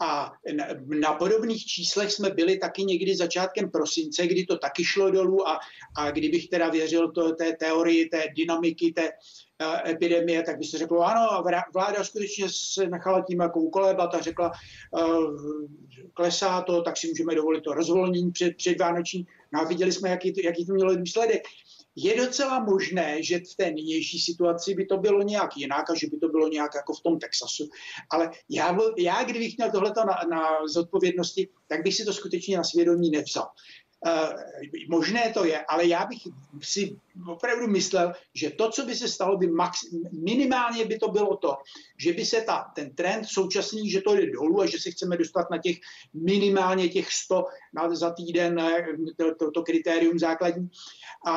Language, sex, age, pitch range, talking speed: Czech, male, 60-79, 165-195 Hz, 180 wpm